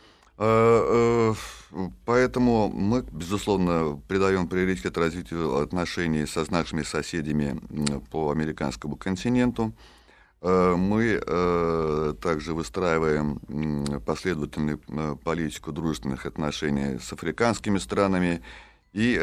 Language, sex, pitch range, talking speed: Russian, male, 75-95 Hz, 75 wpm